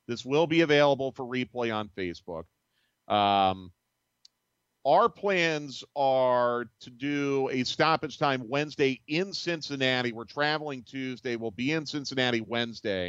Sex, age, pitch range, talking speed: male, 40-59, 115-140 Hz, 130 wpm